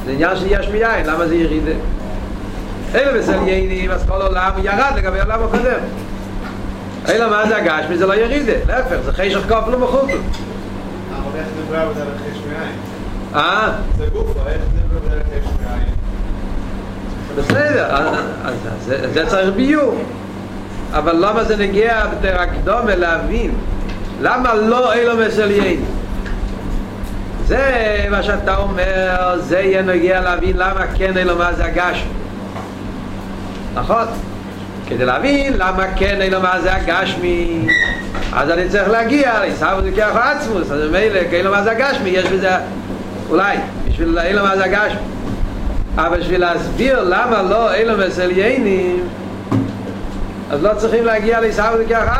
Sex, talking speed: male, 135 wpm